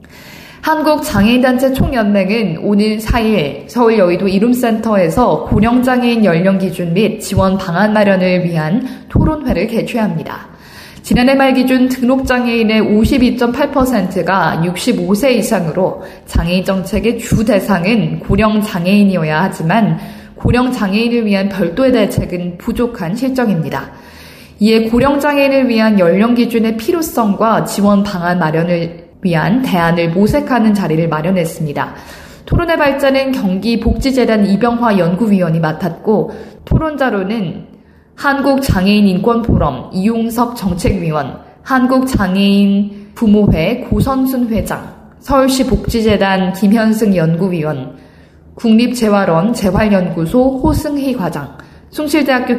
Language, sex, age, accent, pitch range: Korean, female, 20-39, native, 180-240 Hz